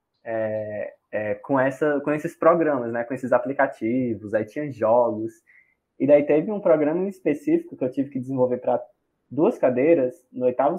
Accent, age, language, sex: Brazilian, 20-39, Portuguese, male